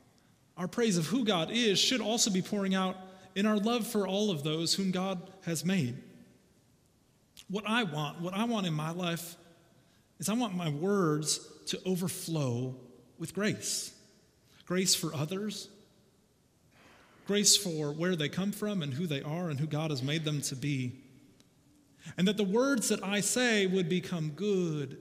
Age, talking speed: 30-49, 170 wpm